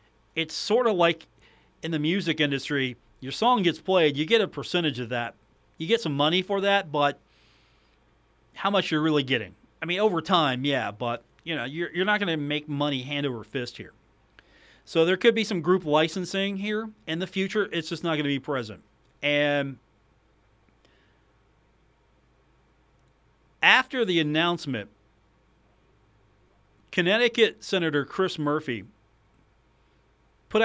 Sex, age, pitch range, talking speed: male, 40-59, 135-185 Hz, 145 wpm